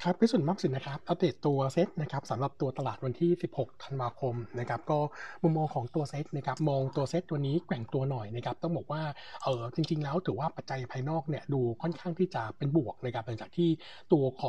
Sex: male